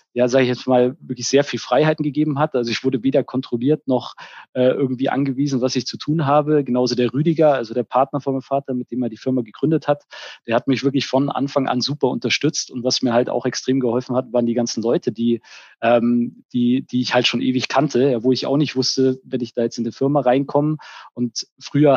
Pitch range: 120-140 Hz